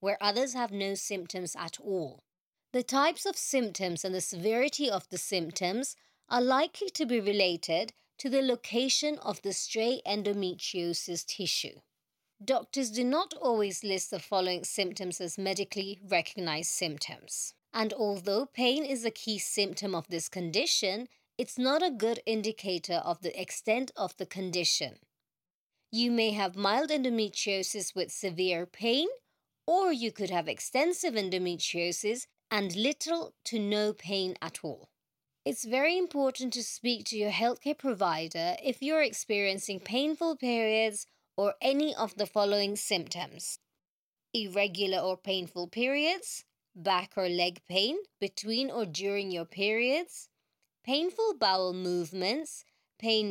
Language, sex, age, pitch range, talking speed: English, female, 30-49, 185-255 Hz, 135 wpm